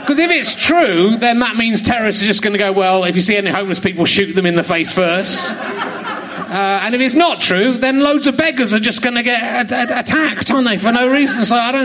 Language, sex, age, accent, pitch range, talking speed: English, male, 40-59, British, 165-225 Hz, 265 wpm